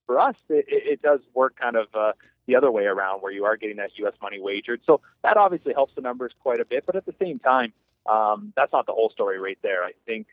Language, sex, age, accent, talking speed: English, male, 30-49, American, 260 wpm